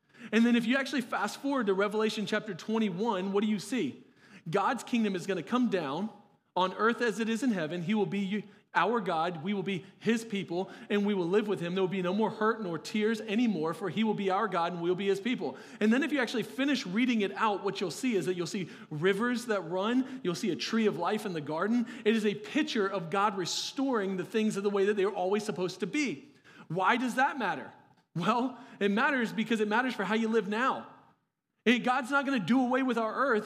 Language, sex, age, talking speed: English, male, 40-59, 250 wpm